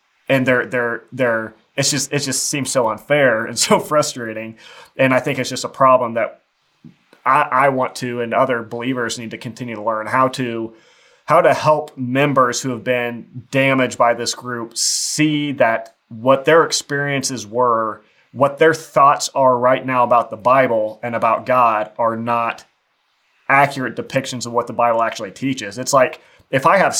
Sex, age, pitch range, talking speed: male, 30-49, 120-140 Hz, 180 wpm